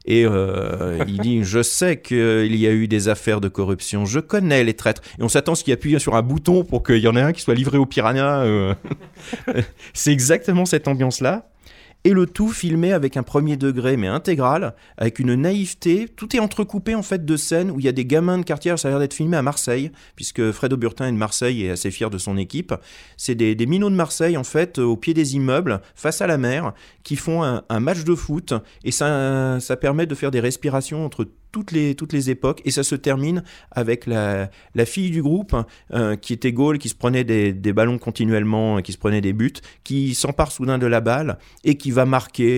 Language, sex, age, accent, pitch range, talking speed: French, male, 30-49, French, 110-150 Hz, 230 wpm